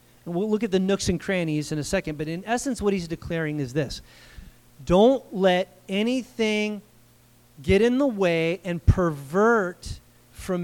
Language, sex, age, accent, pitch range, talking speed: English, male, 30-49, American, 160-205 Hz, 160 wpm